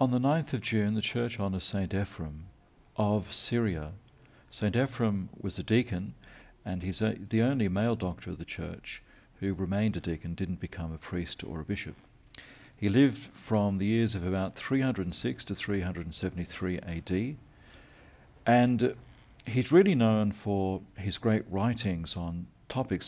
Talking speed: 150 wpm